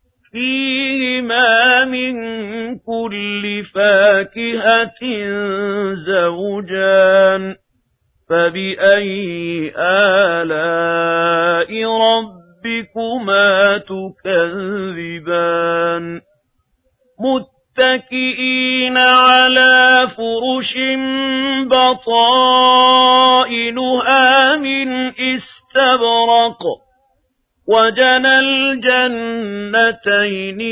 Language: Arabic